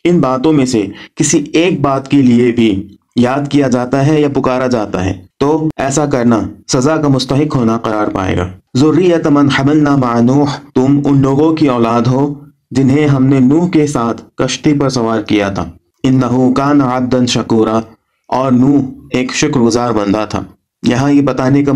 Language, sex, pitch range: Urdu, male, 115-145 Hz